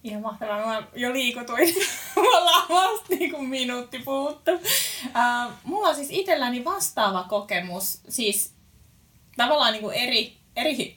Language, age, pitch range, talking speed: Finnish, 20-39, 195-275 Hz, 120 wpm